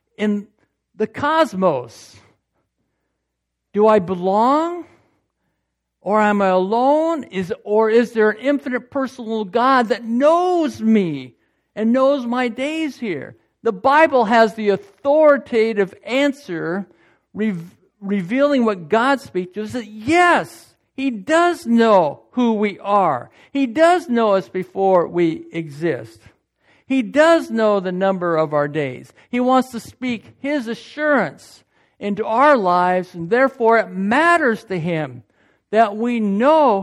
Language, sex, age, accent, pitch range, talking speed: English, male, 60-79, American, 185-245 Hz, 130 wpm